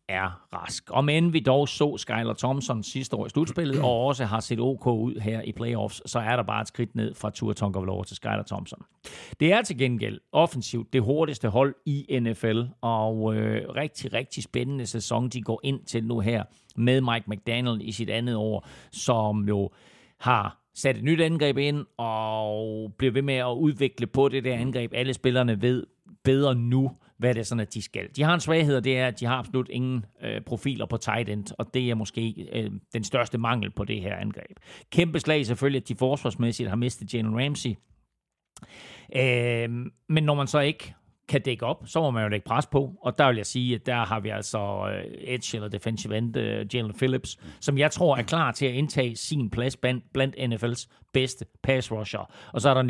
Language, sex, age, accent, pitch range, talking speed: Danish, male, 40-59, native, 110-135 Hz, 210 wpm